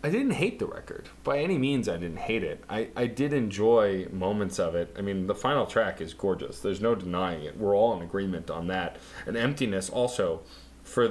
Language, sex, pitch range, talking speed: English, male, 85-135 Hz, 215 wpm